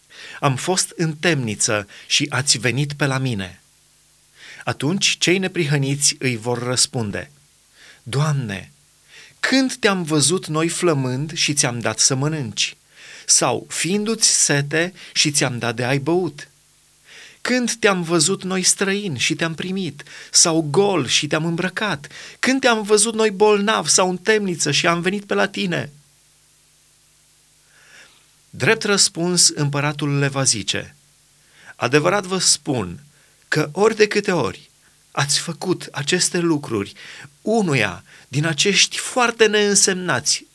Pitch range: 135-185 Hz